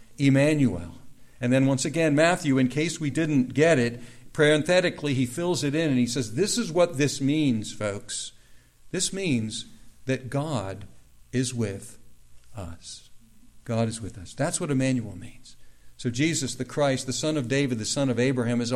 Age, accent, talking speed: 60-79, American, 175 wpm